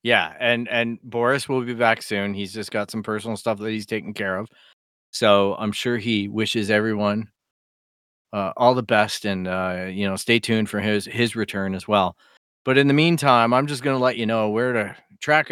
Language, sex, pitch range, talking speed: English, male, 105-130 Hz, 210 wpm